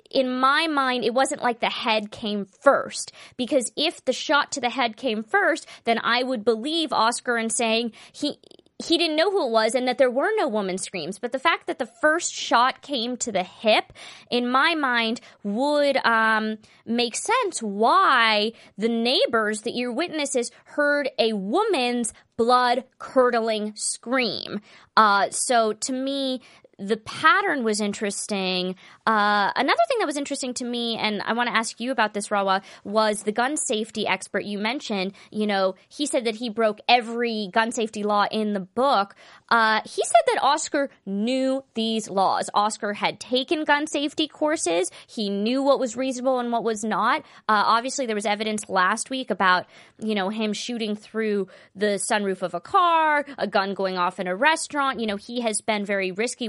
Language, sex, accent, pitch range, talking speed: English, female, American, 210-270 Hz, 180 wpm